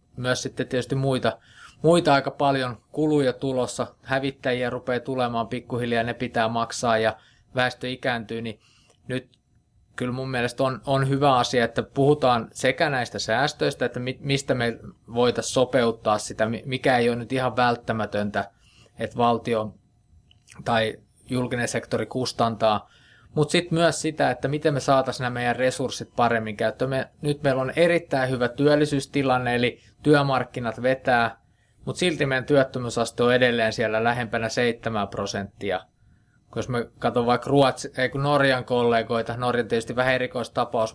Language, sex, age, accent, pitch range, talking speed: Finnish, male, 20-39, native, 115-135 Hz, 140 wpm